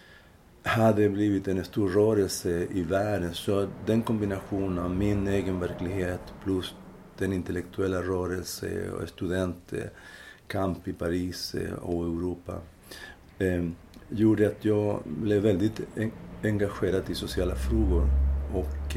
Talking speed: 110 wpm